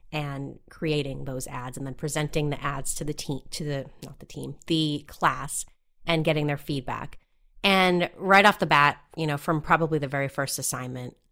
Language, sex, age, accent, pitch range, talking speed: English, female, 30-49, American, 140-165 Hz, 190 wpm